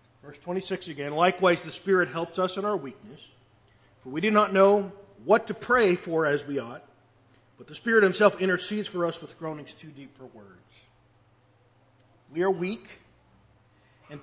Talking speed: 170 wpm